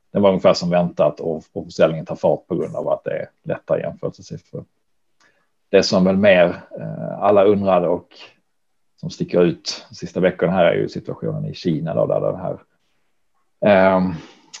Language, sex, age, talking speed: Swedish, male, 40-59, 165 wpm